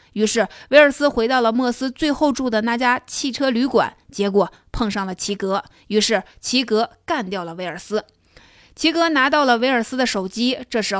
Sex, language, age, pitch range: female, Chinese, 20-39, 200-255 Hz